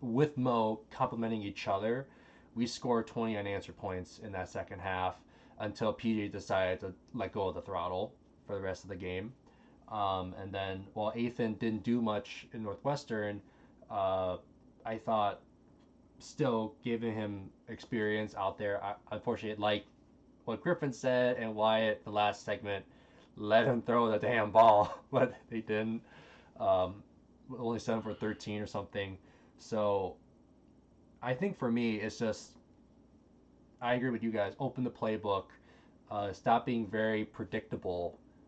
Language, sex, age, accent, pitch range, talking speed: English, male, 20-39, American, 100-120 Hz, 150 wpm